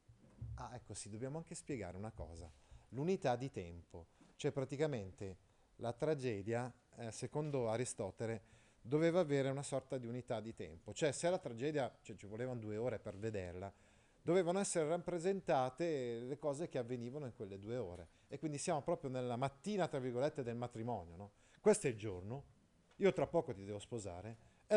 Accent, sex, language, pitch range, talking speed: native, male, Italian, 110-155 Hz, 170 wpm